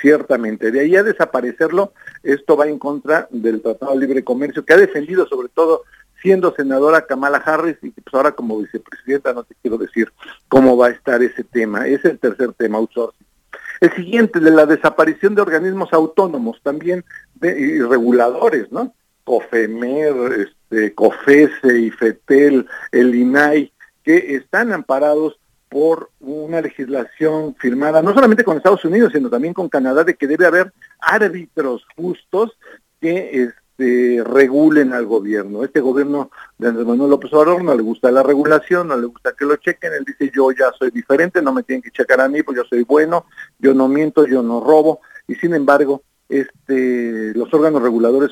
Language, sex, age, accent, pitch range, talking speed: English, male, 50-69, Mexican, 130-170 Hz, 170 wpm